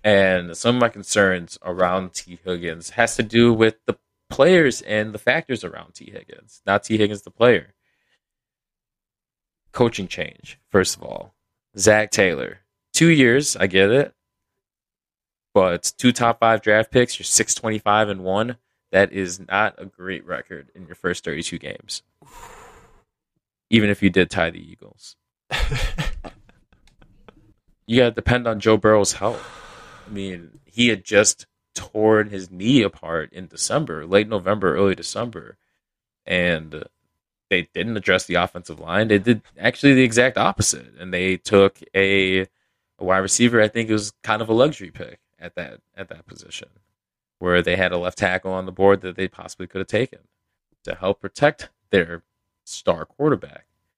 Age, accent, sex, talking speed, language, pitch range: 20-39, American, male, 155 wpm, English, 90-115 Hz